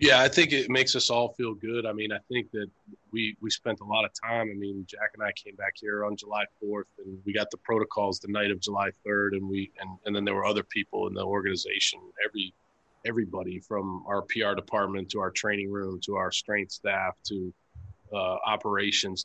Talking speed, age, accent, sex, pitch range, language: 220 wpm, 30-49, American, male, 95-110 Hz, English